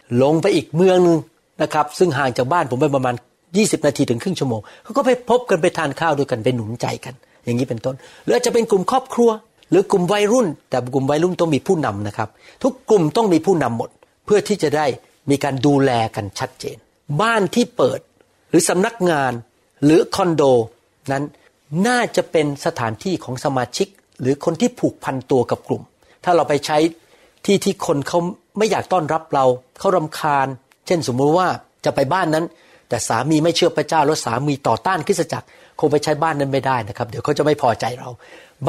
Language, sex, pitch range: Thai, male, 125-180 Hz